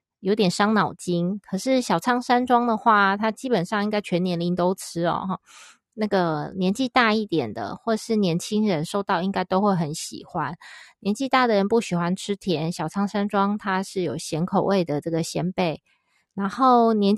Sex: female